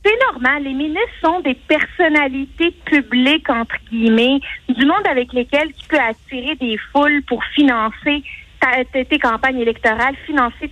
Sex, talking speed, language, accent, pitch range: female, 150 wpm, French, Canadian, 240-290 Hz